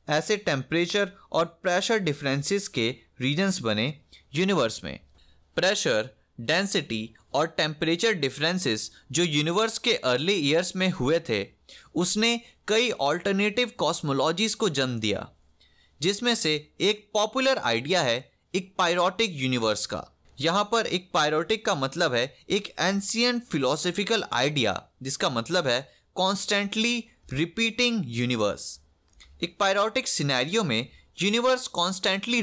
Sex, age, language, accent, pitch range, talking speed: male, 20-39, Hindi, native, 125-205 Hz, 115 wpm